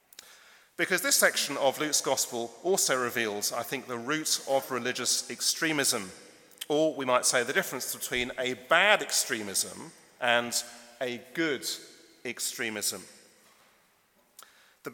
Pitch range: 120-155 Hz